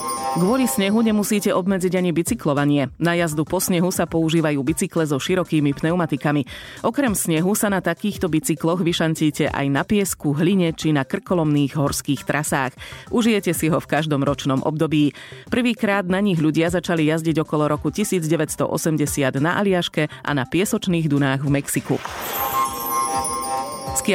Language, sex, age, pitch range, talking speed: Slovak, female, 30-49, 145-185 Hz, 140 wpm